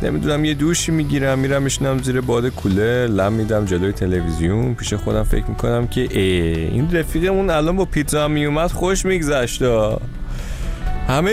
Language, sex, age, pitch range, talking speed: Persian, male, 30-49, 95-140 Hz, 150 wpm